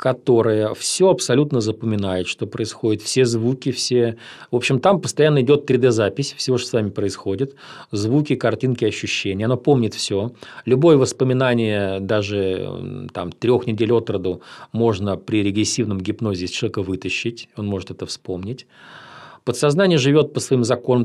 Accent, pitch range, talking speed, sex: native, 110-135 Hz, 140 wpm, male